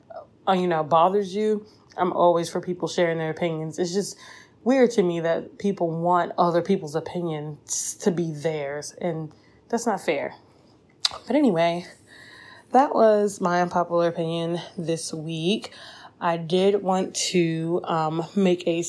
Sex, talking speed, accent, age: female, 145 wpm, American, 20-39